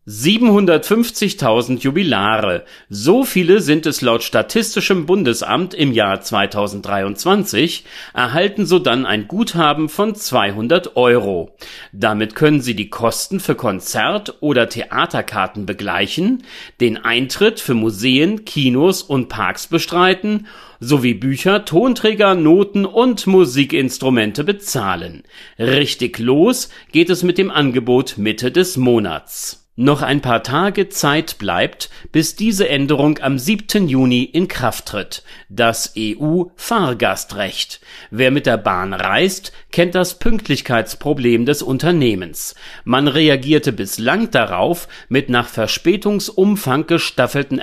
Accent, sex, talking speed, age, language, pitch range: German, male, 110 wpm, 40-59, German, 115-185 Hz